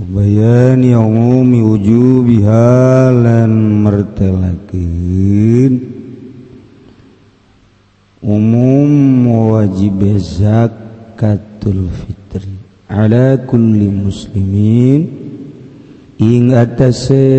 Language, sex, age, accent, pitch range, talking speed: Indonesian, male, 50-69, native, 95-125 Hz, 45 wpm